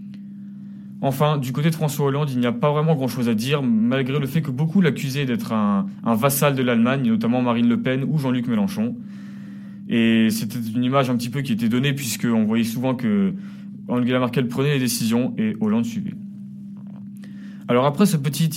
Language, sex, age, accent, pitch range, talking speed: French, male, 20-39, French, 130-200 Hz, 190 wpm